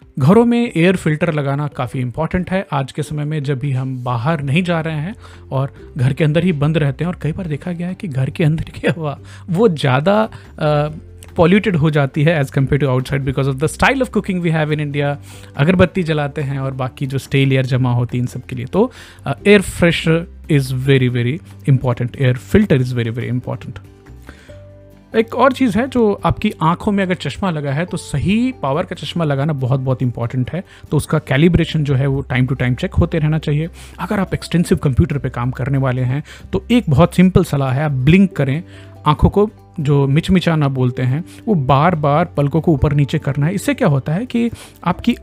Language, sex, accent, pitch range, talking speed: Hindi, male, native, 130-175 Hz, 215 wpm